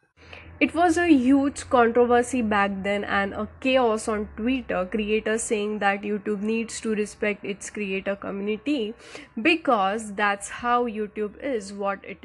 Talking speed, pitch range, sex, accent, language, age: 140 wpm, 210-260 Hz, female, Indian, English, 10-29